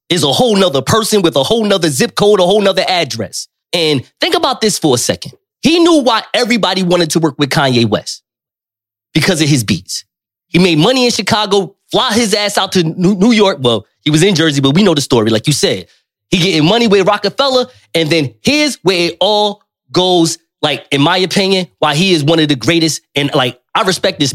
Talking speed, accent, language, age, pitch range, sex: 220 wpm, American, English, 20-39, 140-200 Hz, male